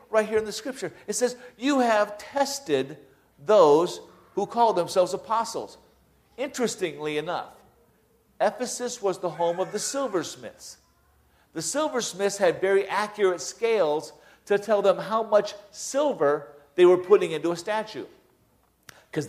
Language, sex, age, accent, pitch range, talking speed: English, male, 50-69, American, 175-225 Hz, 135 wpm